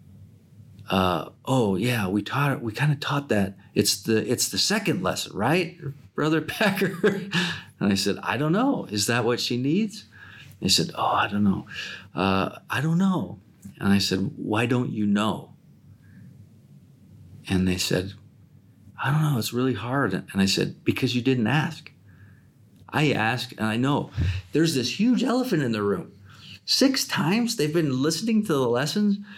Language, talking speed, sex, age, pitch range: English, 165 wpm, male, 40-59, 105-155 Hz